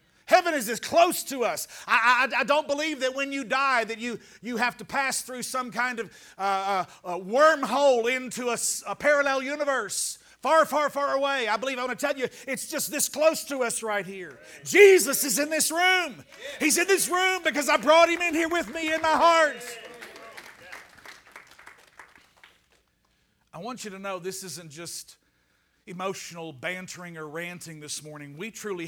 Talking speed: 185 wpm